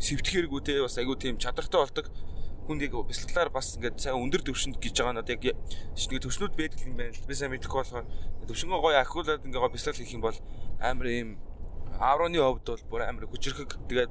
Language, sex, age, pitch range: Korean, male, 20-39, 90-140 Hz